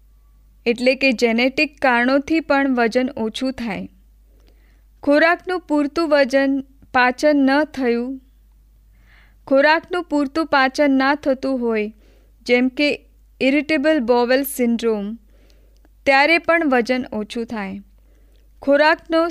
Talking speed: 70 wpm